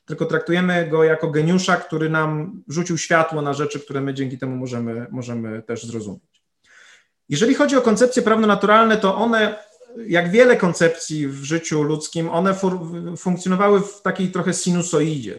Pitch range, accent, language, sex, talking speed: 150-195 Hz, native, Polish, male, 150 wpm